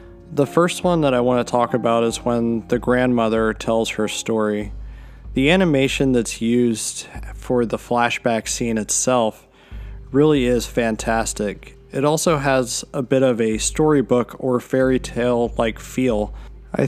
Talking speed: 150 wpm